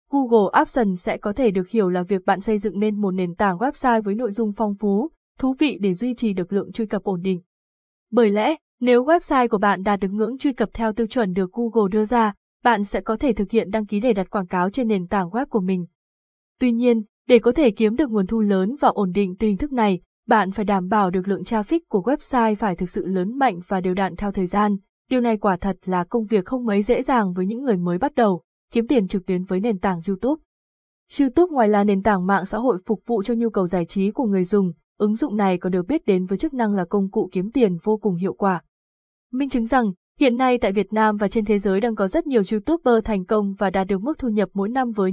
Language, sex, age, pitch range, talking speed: Vietnamese, female, 20-39, 195-240 Hz, 260 wpm